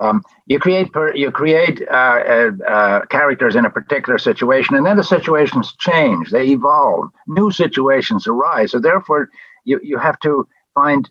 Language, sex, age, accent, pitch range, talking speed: English, male, 60-79, American, 135-225 Hz, 160 wpm